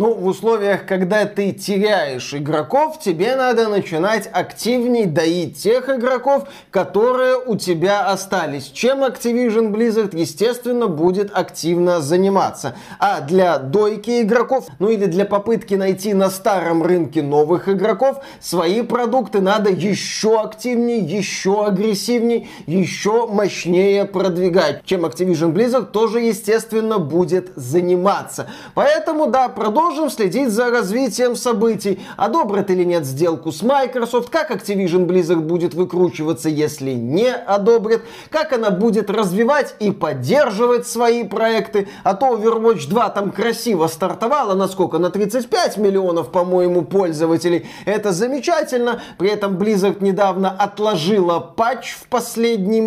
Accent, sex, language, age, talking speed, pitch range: native, male, Russian, 20-39, 125 wpm, 180-230 Hz